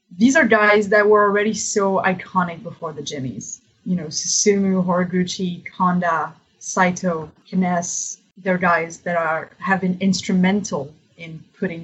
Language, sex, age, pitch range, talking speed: English, female, 20-39, 170-200 Hz, 135 wpm